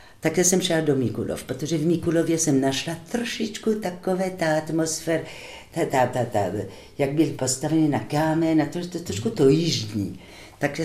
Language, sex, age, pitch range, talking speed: Czech, female, 50-69, 125-170 Hz, 175 wpm